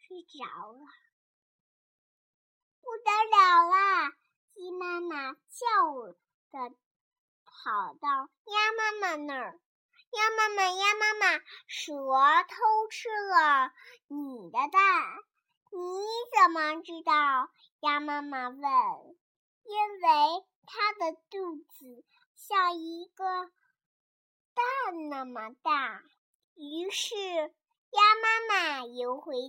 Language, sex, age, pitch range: Chinese, male, 50-69, 300-420 Hz